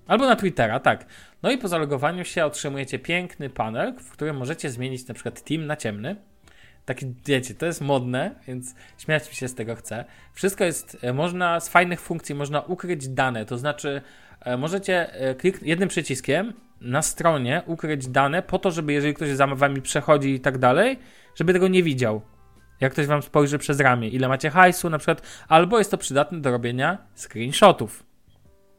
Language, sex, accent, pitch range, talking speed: Polish, male, native, 125-160 Hz, 175 wpm